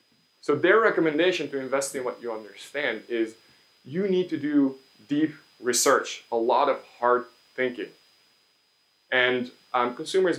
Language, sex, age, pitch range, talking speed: English, male, 20-39, 125-160 Hz, 140 wpm